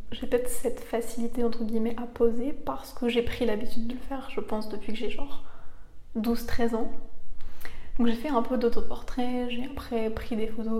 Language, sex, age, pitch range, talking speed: French, female, 20-39, 225-245 Hz, 195 wpm